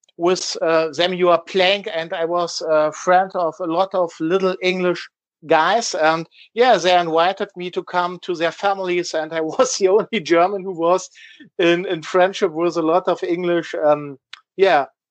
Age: 50-69